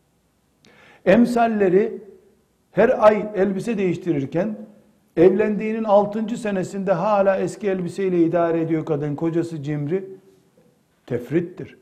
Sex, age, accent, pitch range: male, 60-79, native, 155-210 Hz